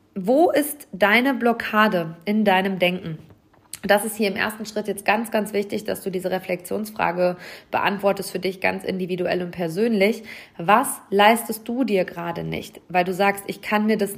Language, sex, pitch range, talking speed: German, female, 170-210 Hz, 175 wpm